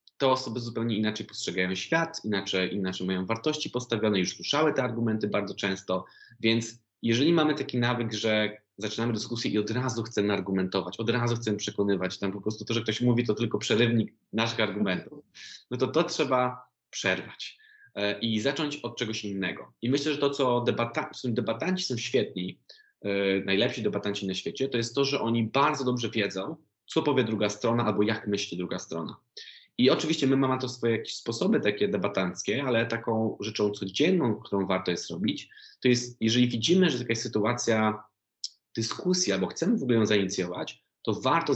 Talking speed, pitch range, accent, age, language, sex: 175 wpm, 100-125 Hz, native, 20-39, Polish, male